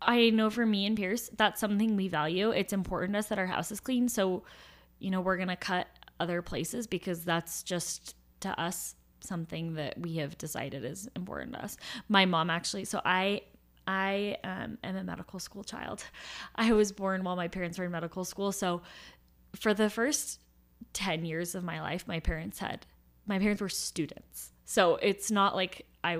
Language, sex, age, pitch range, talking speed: English, female, 10-29, 165-195 Hz, 195 wpm